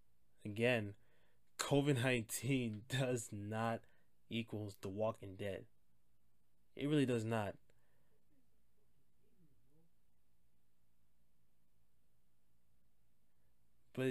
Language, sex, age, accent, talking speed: English, male, 20-39, American, 55 wpm